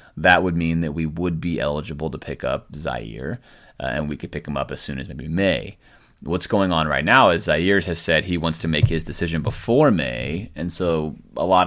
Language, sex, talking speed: English, male, 230 wpm